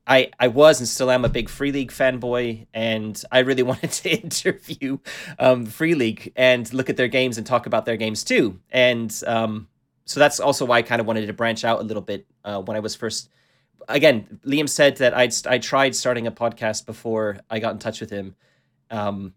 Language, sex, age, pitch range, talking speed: English, male, 30-49, 110-135 Hz, 215 wpm